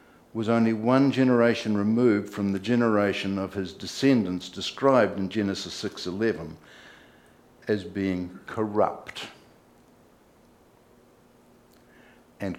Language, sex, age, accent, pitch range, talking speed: English, male, 60-79, Australian, 100-135 Hz, 90 wpm